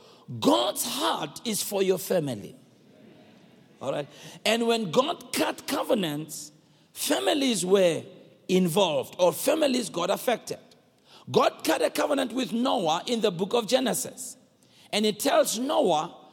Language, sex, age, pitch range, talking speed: English, male, 50-69, 190-245 Hz, 130 wpm